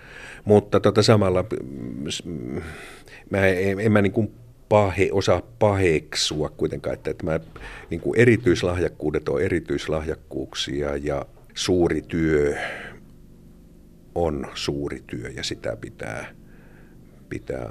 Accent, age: native, 50-69